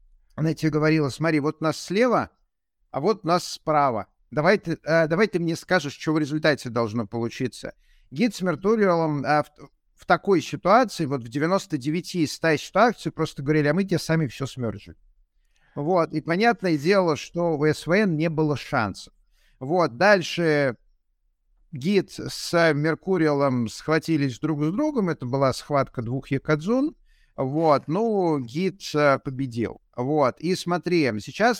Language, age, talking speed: Russian, 50-69, 145 wpm